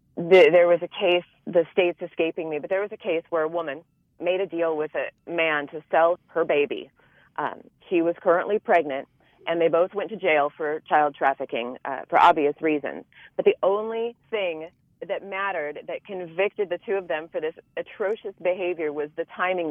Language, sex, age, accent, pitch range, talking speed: English, female, 30-49, American, 160-200 Hz, 190 wpm